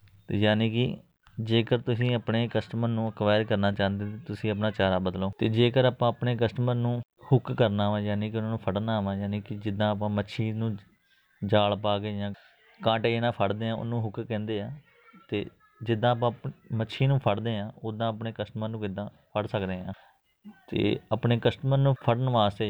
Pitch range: 105-115 Hz